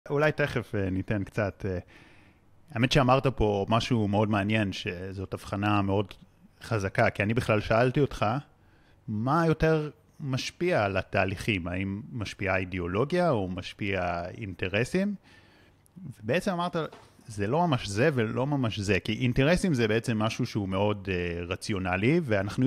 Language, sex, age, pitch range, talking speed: Hebrew, male, 30-49, 100-135 Hz, 125 wpm